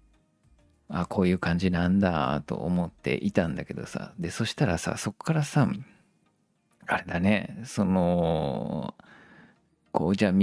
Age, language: 40-59, Japanese